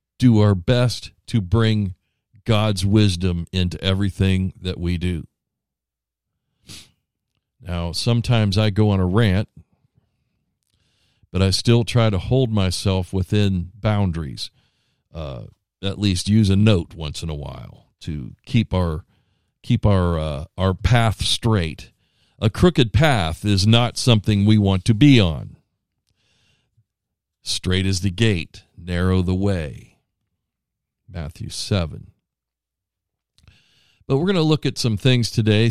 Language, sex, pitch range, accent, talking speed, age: English, male, 95-115 Hz, American, 125 wpm, 50-69